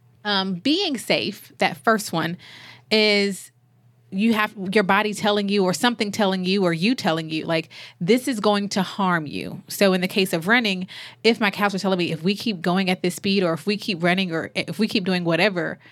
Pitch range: 170-210 Hz